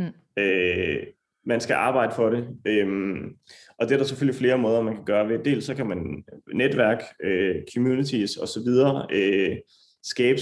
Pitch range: 105-130 Hz